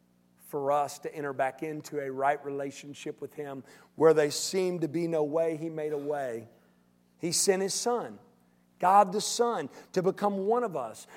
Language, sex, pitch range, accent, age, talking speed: English, male, 130-195 Hz, American, 50-69, 185 wpm